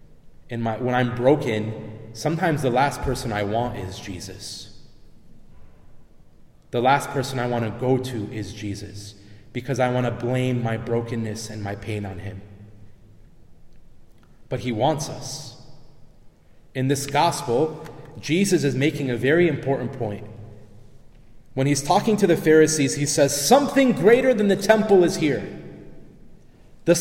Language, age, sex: English, 30-49, male